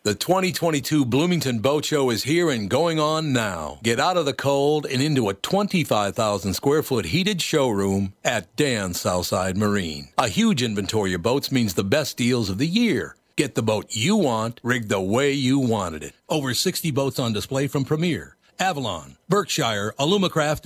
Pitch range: 115-160 Hz